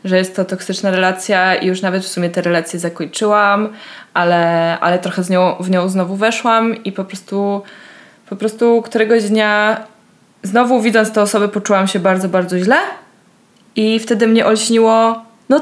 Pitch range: 195-250 Hz